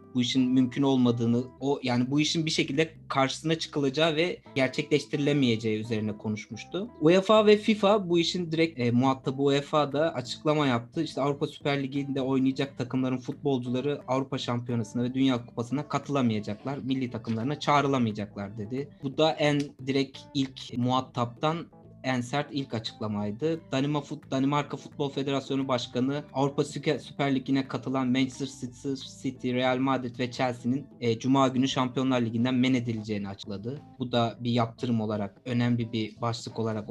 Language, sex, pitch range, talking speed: Turkish, male, 125-155 Hz, 145 wpm